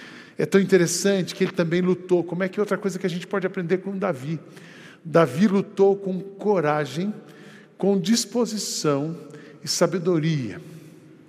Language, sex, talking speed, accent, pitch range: Portuguese, male, 150 wpm, Brazilian, 160-200 Hz